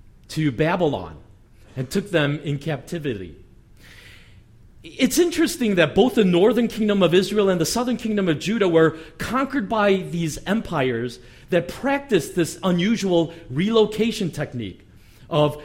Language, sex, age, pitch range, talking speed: English, male, 40-59, 135-205 Hz, 130 wpm